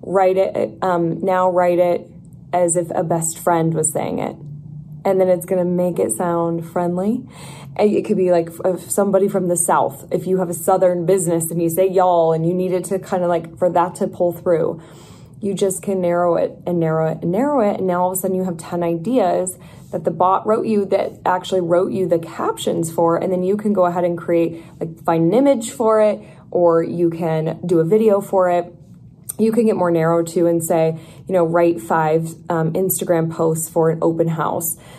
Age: 20-39